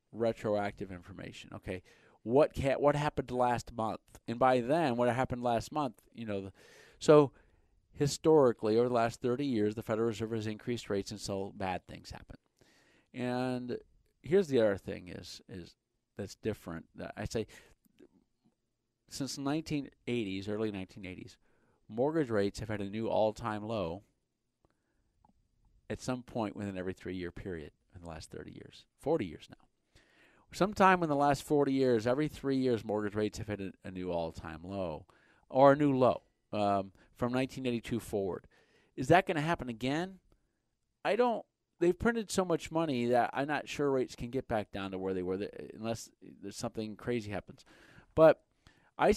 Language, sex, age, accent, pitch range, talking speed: English, male, 40-59, American, 100-135 Hz, 165 wpm